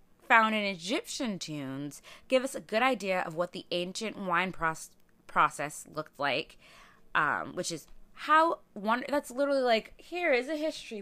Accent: American